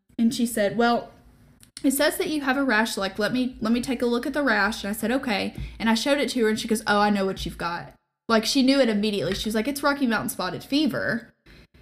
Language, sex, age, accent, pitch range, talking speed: English, female, 10-29, American, 200-240 Hz, 280 wpm